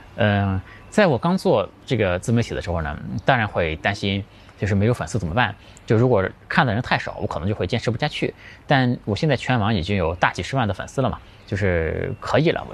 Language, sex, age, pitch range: Chinese, male, 20-39, 95-125 Hz